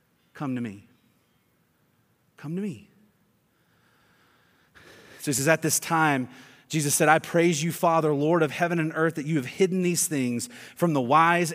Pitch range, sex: 155-210 Hz, male